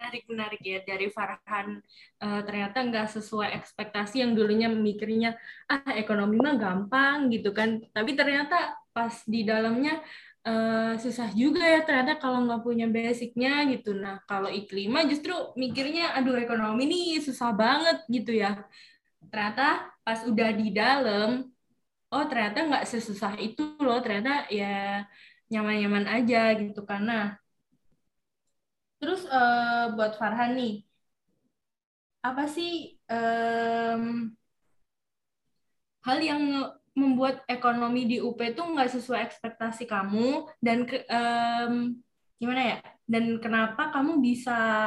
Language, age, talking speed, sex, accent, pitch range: Indonesian, 10-29, 120 wpm, female, native, 215-265 Hz